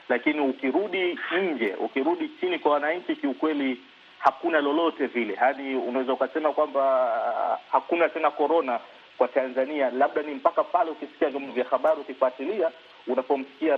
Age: 40-59